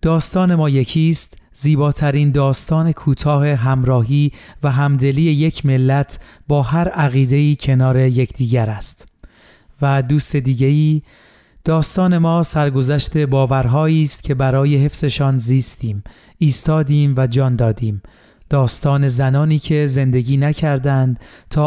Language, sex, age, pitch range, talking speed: Persian, male, 30-49, 130-150 Hz, 110 wpm